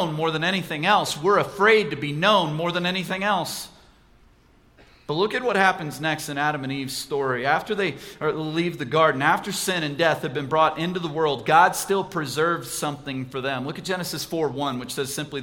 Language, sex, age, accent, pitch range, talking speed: English, male, 40-59, American, 145-190 Hz, 205 wpm